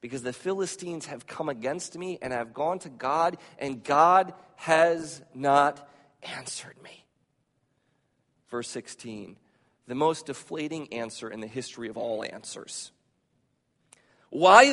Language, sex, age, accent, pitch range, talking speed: English, male, 40-59, American, 125-190 Hz, 125 wpm